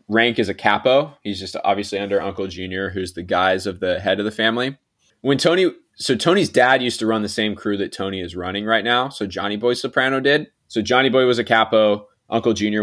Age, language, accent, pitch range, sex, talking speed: 20-39, English, American, 95-125 Hz, male, 230 wpm